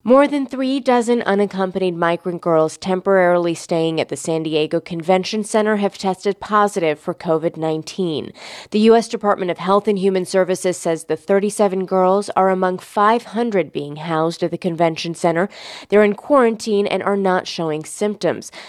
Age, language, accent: 20-39, English, American